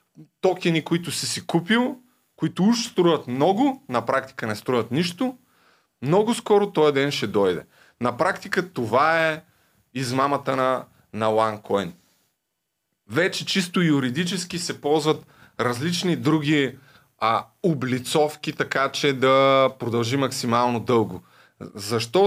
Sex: male